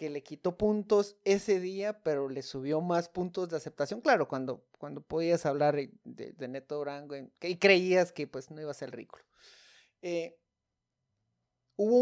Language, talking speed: Spanish, 165 wpm